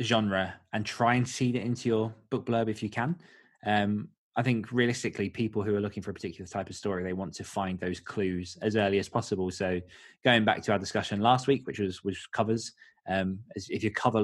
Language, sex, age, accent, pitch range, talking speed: English, male, 20-39, British, 100-120 Hz, 225 wpm